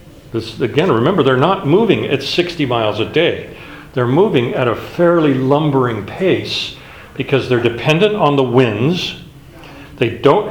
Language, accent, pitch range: English, American, 120-150 Hz